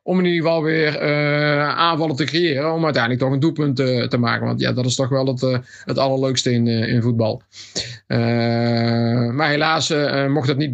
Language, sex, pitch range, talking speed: Dutch, male, 130-150 Hz, 205 wpm